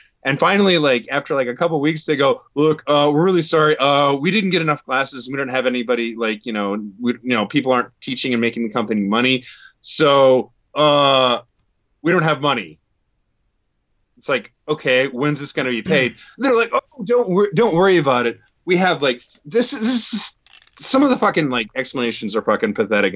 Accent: American